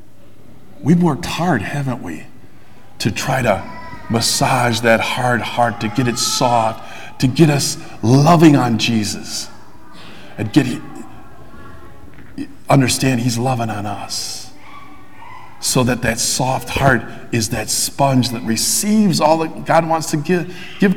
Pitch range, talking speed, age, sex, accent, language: 125-185 Hz, 130 wpm, 50-69, male, American, English